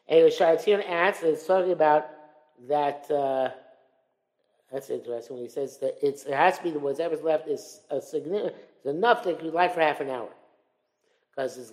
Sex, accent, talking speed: male, American, 180 wpm